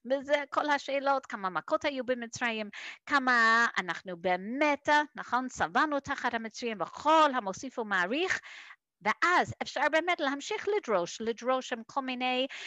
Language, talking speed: Hebrew, 125 wpm